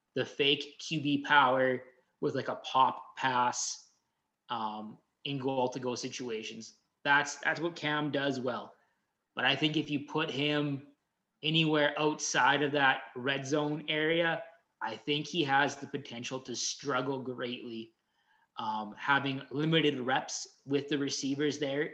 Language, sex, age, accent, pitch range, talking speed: English, male, 20-39, American, 130-150 Hz, 140 wpm